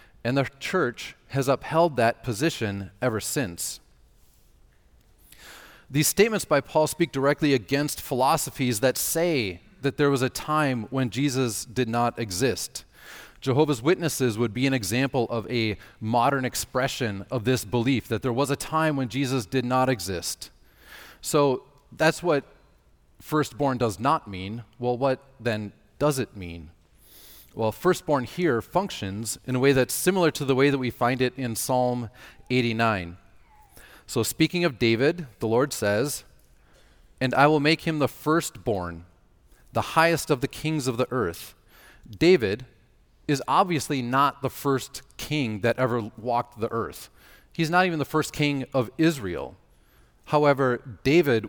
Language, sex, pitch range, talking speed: English, male, 110-145 Hz, 150 wpm